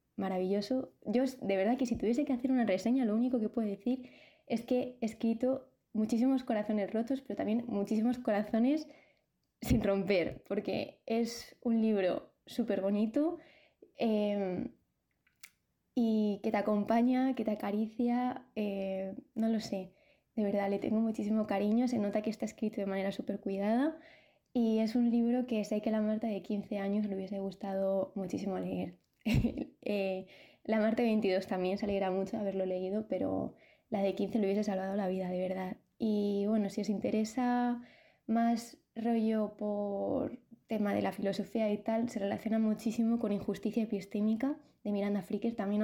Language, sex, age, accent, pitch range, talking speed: Spanish, female, 20-39, Spanish, 200-235 Hz, 160 wpm